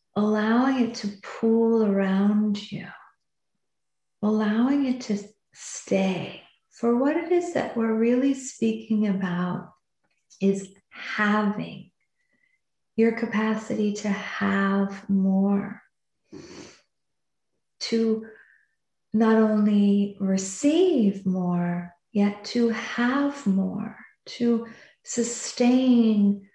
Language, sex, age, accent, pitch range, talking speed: English, female, 50-69, American, 200-235 Hz, 85 wpm